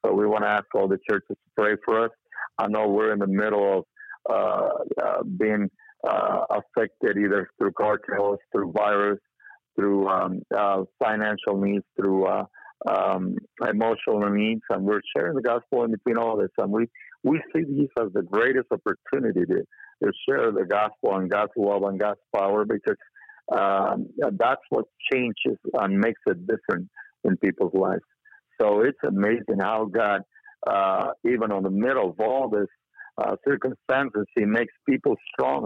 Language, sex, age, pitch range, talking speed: English, male, 60-79, 100-130 Hz, 165 wpm